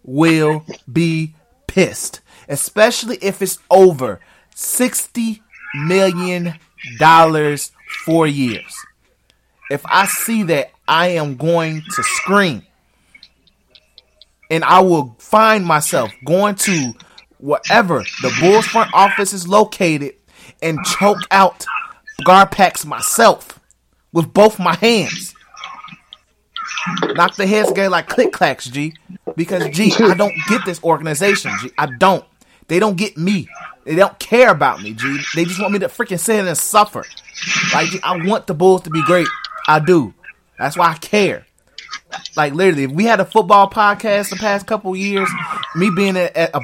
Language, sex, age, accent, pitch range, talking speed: English, male, 30-49, American, 155-200 Hz, 145 wpm